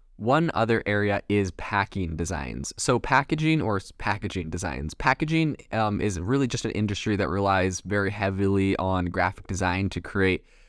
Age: 20-39